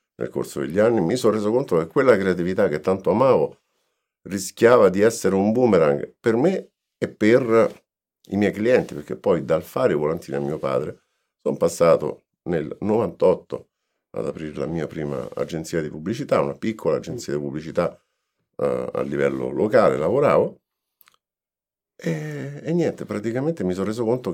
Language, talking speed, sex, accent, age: Italian, 160 wpm, male, native, 50-69